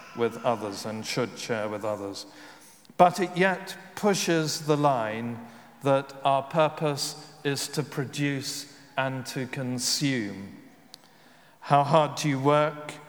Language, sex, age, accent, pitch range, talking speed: English, male, 40-59, British, 125-150 Hz, 125 wpm